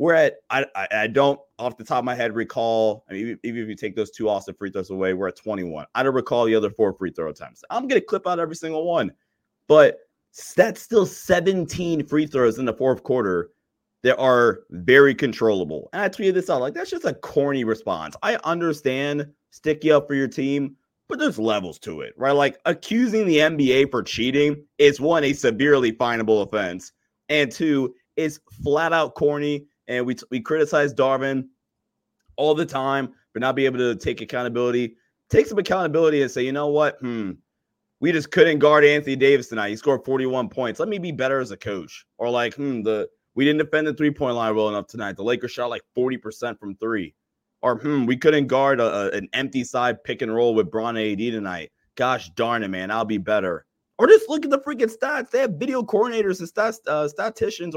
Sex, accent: male, American